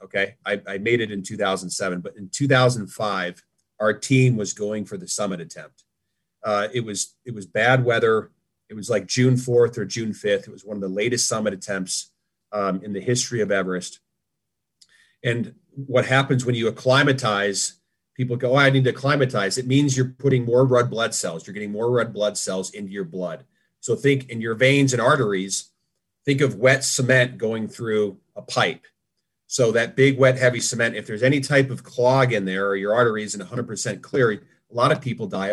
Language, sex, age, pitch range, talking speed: English, male, 40-59, 105-130 Hz, 200 wpm